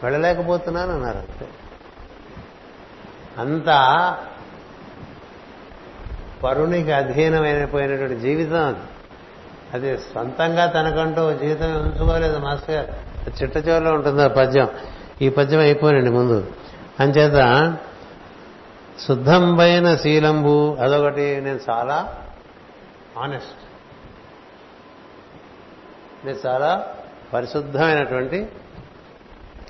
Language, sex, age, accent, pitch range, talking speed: Telugu, male, 60-79, native, 125-155 Hz, 65 wpm